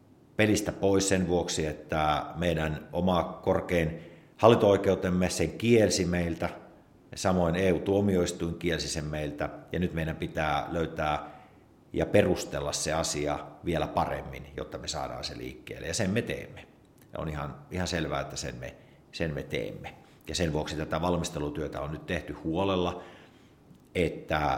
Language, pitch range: Finnish, 75-90 Hz